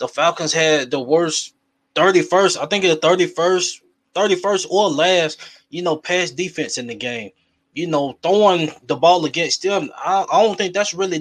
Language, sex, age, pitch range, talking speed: English, male, 20-39, 150-185 Hz, 175 wpm